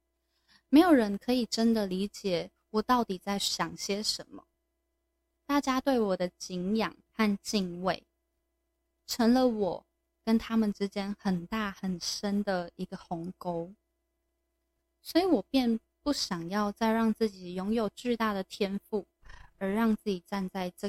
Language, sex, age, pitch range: Chinese, female, 20-39, 190-255 Hz